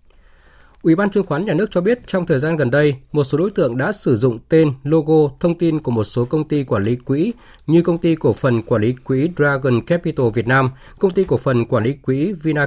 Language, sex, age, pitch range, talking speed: Vietnamese, male, 20-39, 125-160 Hz, 245 wpm